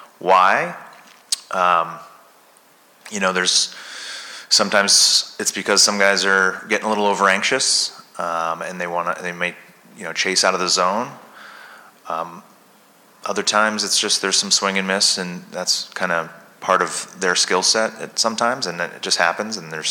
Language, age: English, 30-49